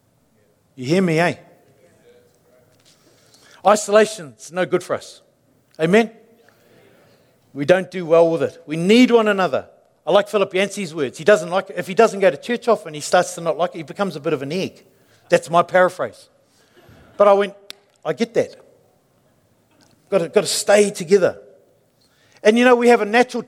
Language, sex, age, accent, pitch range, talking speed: English, male, 50-69, Australian, 165-225 Hz, 185 wpm